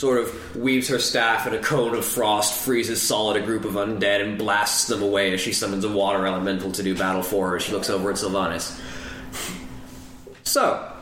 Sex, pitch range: male, 110-135 Hz